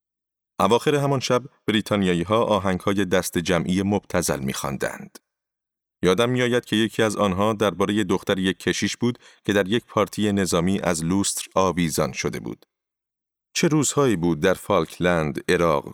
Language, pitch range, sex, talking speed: Persian, 90-115 Hz, male, 135 wpm